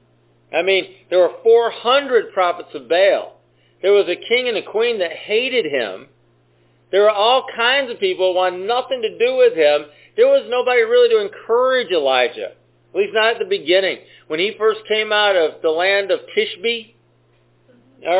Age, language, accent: 50-69, English, American